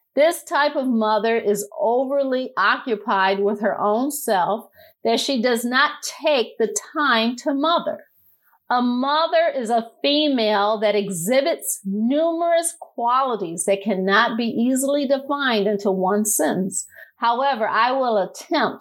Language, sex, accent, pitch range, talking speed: English, female, American, 215-295 Hz, 130 wpm